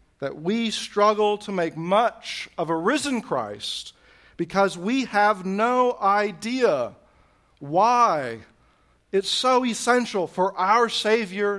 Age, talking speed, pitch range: 40-59, 115 wpm, 145-205 Hz